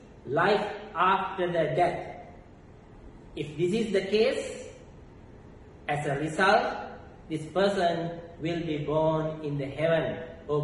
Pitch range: 160-210 Hz